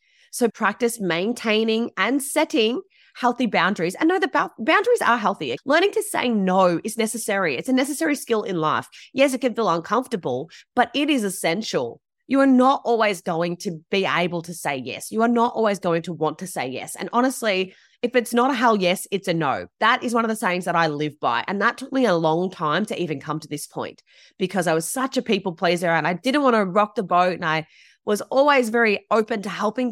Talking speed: 225 wpm